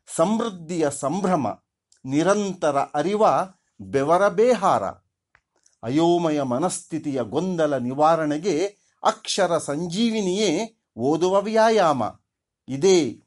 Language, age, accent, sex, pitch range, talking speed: Kannada, 50-69, native, male, 145-215 Hz, 65 wpm